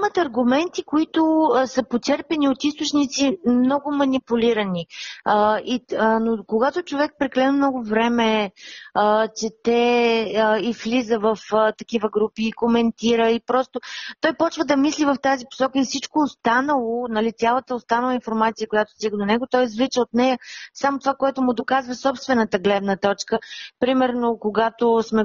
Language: Bulgarian